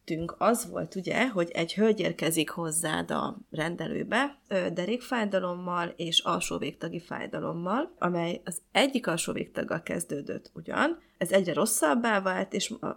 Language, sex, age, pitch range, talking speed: Hungarian, female, 30-49, 170-210 Hz, 125 wpm